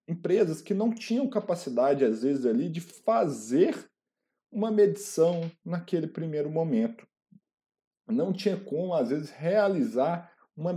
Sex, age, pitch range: male, 40-59, 165-220 Hz